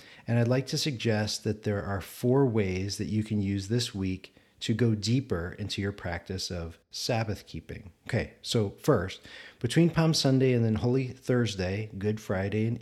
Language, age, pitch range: English, 40-59, 105-130 Hz